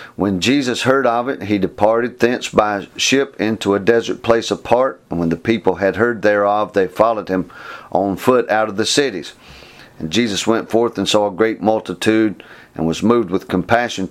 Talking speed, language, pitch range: 190 wpm, English, 95-115 Hz